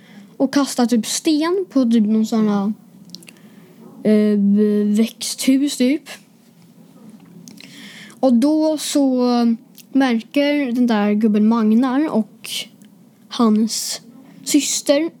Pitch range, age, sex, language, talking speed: 215-255 Hz, 20-39, female, Swedish, 85 wpm